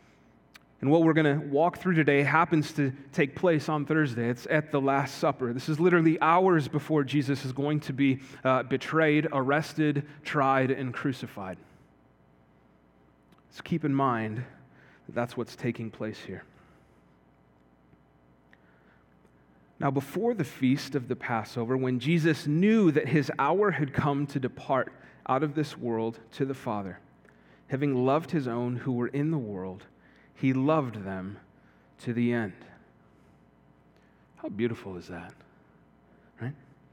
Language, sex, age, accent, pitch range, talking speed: English, male, 30-49, American, 120-160 Hz, 145 wpm